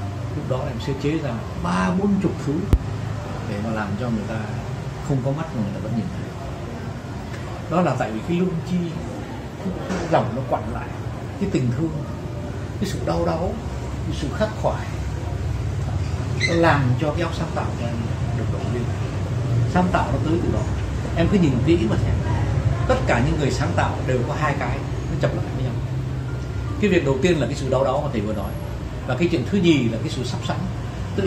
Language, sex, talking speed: Vietnamese, male, 210 wpm